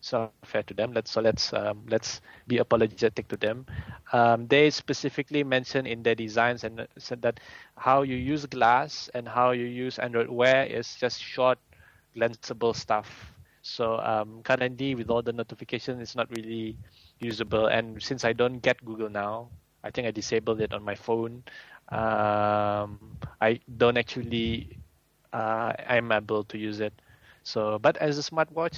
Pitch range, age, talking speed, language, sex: 110-125 Hz, 20-39, 165 wpm, English, male